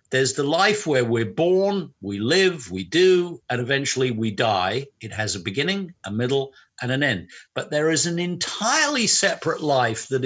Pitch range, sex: 130-180 Hz, male